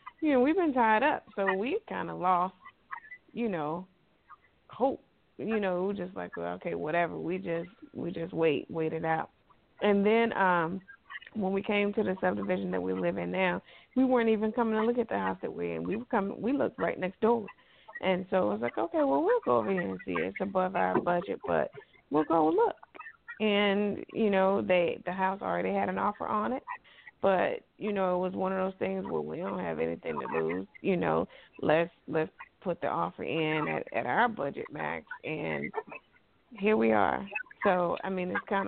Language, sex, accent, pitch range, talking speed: English, female, American, 175-220 Hz, 215 wpm